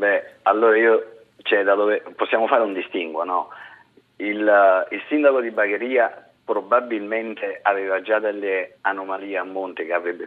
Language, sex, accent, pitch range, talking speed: Italian, male, native, 100-135 Hz, 145 wpm